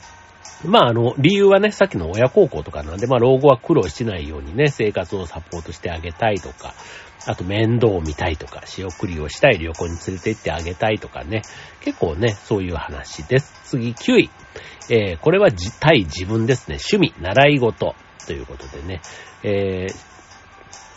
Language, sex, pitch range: Japanese, male, 90-135 Hz